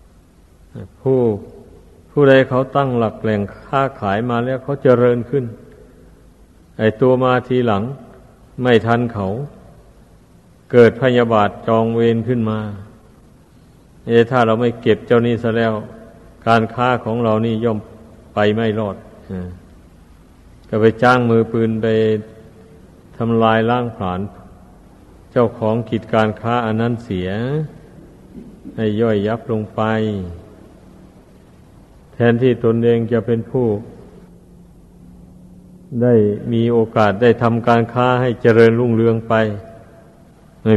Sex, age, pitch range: male, 60-79, 100-120 Hz